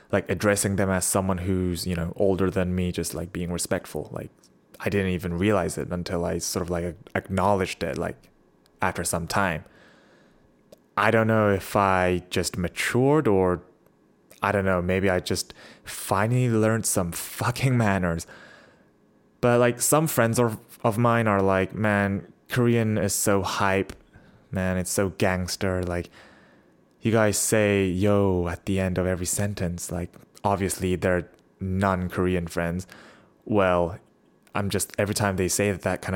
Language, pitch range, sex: English, 90-105 Hz, male